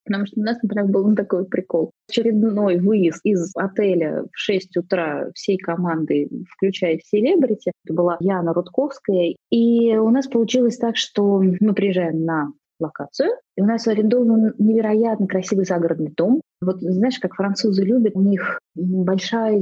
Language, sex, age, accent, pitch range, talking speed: Russian, female, 20-39, native, 185-255 Hz, 145 wpm